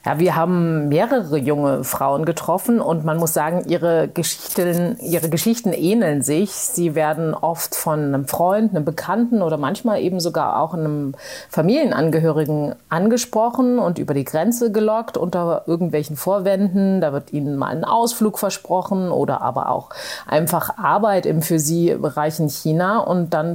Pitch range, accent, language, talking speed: 155-190 Hz, German, German, 155 wpm